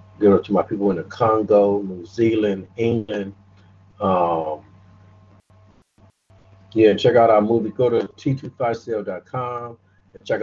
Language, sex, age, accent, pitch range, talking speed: English, male, 50-69, American, 95-110 Hz, 115 wpm